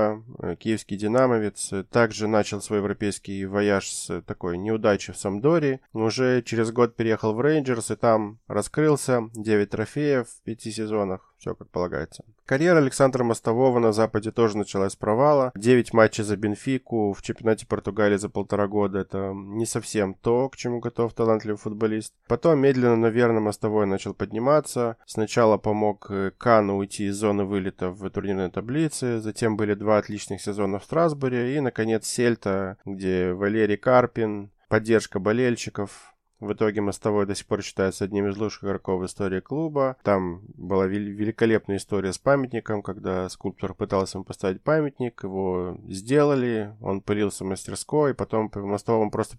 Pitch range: 100-120 Hz